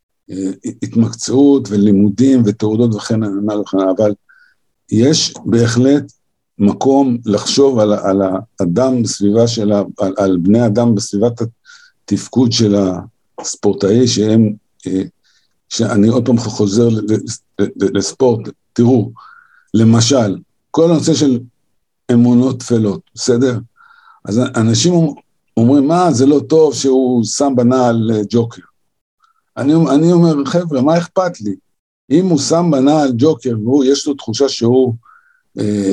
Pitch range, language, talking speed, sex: 110-145 Hz, Hebrew, 115 wpm, male